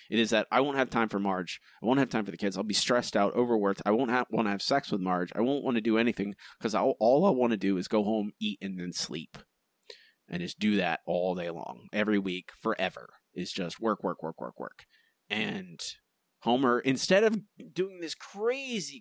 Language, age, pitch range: English, 30-49, 120-190 Hz